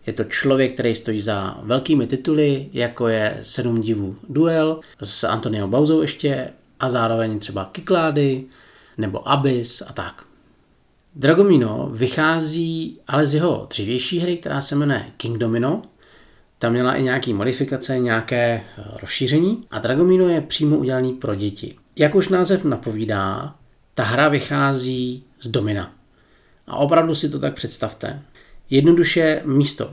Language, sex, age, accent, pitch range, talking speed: Czech, male, 40-59, native, 115-150 Hz, 135 wpm